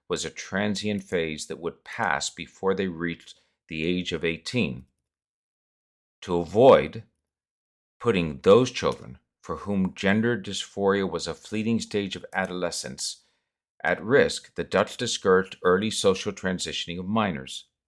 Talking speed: 130 wpm